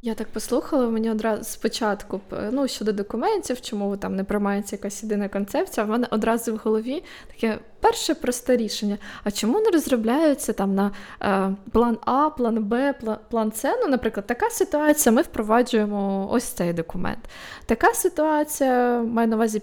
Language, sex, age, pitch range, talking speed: Ukrainian, female, 20-39, 205-250 Hz, 160 wpm